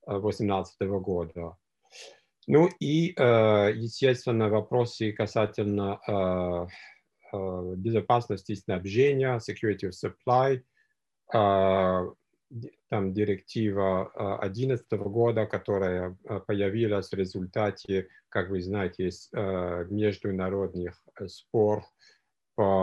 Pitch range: 95-115 Hz